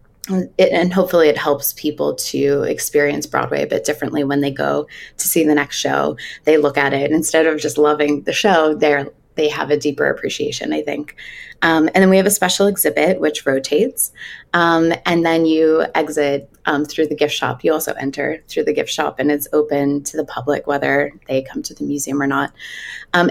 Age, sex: 20-39, female